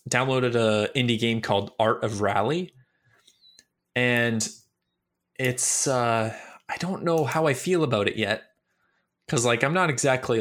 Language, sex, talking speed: English, male, 145 wpm